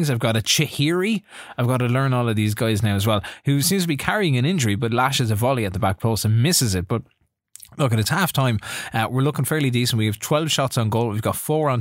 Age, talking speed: 20-39, 275 wpm